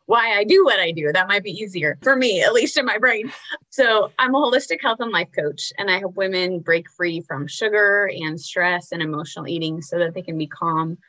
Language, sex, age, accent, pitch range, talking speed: English, female, 20-39, American, 175-235 Hz, 240 wpm